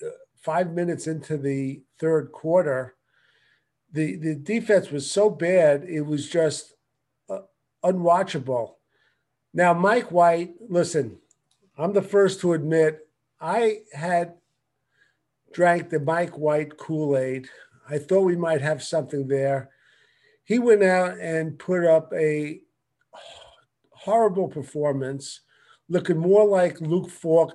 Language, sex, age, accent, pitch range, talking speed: English, male, 50-69, American, 150-185 Hz, 120 wpm